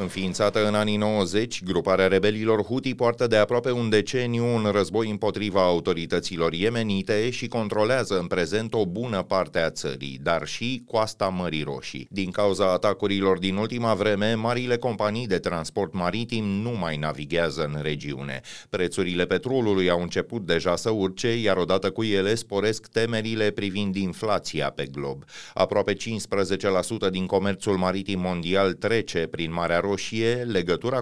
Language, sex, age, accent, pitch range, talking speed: Romanian, male, 30-49, native, 90-115 Hz, 145 wpm